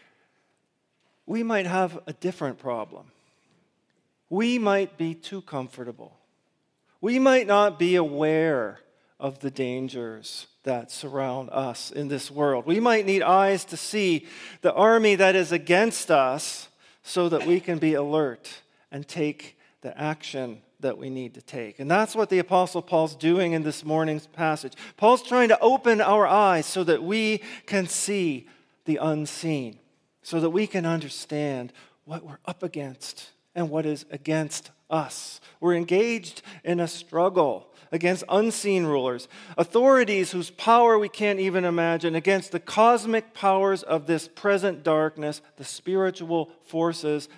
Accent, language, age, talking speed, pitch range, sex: American, English, 40-59, 145 wpm, 145-190 Hz, male